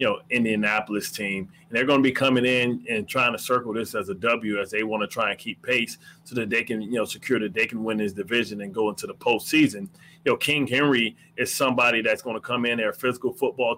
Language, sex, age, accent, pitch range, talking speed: English, male, 30-49, American, 115-140 Hz, 255 wpm